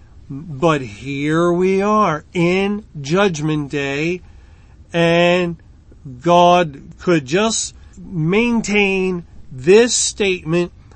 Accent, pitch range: American, 140-175 Hz